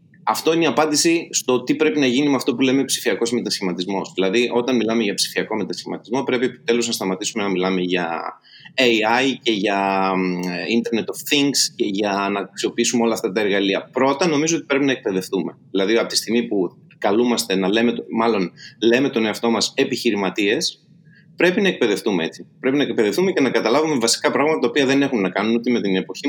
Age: 20-39